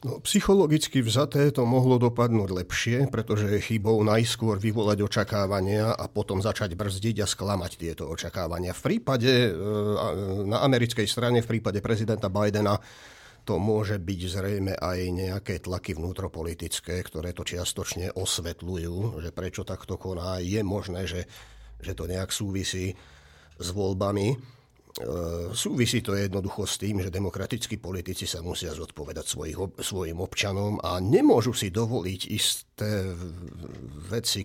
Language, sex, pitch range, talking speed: Slovak, male, 95-115 Hz, 130 wpm